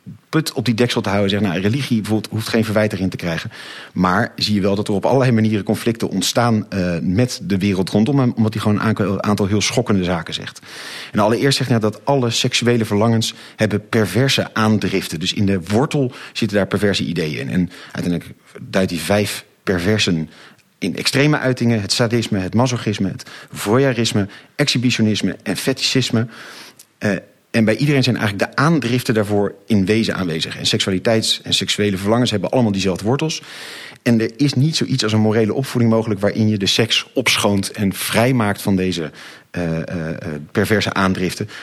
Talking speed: 175 wpm